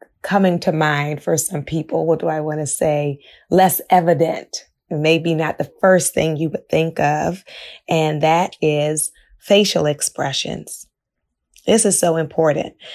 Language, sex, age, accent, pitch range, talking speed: English, female, 20-39, American, 155-185 Hz, 150 wpm